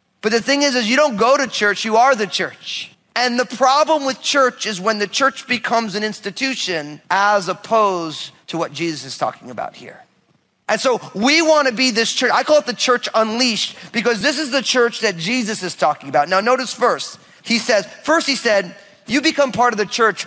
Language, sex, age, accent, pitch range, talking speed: English, male, 30-49, American, 180-250 Hz, 215 wpm